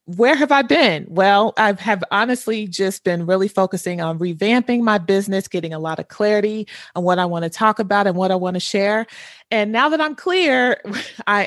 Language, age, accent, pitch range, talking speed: English, 30-49, American, 175-225 Hz, 210 wpm